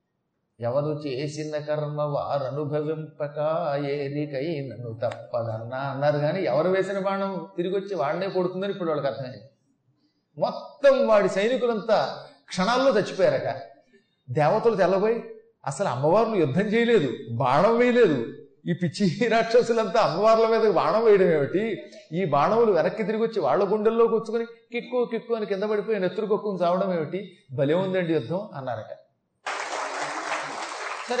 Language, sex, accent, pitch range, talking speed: Telugu, male, native, 160-220 Hz, 115 wpm